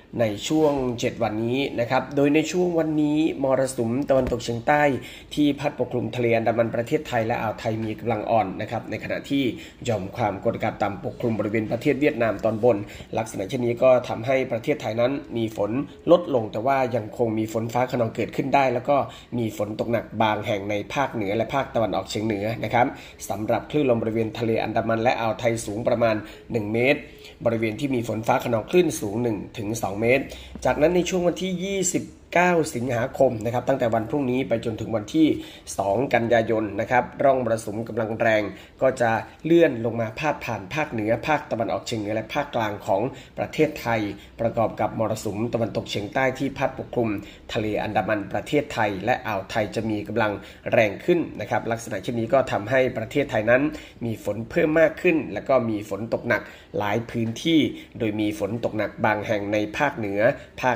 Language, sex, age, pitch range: Thai, male, 20-39, 110-135 Hz